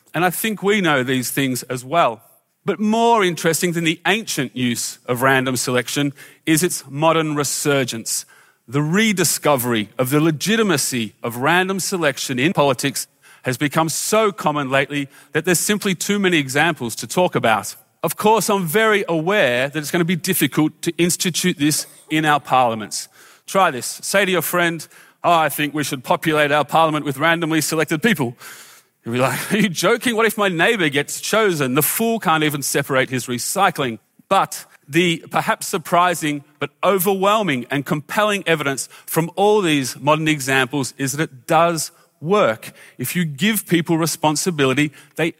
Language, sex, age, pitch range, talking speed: English, male, 30-49, 140-180 Hz, 165 wpm